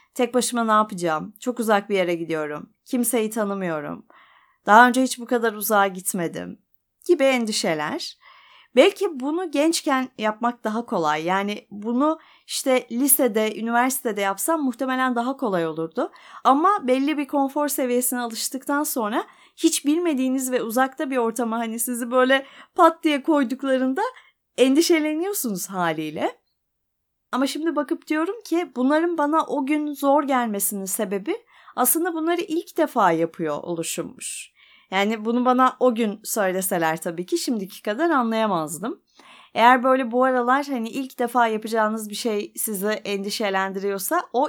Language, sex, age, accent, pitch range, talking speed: Turkish, female, 30-49, native, 200-275 Hz, 135 wpm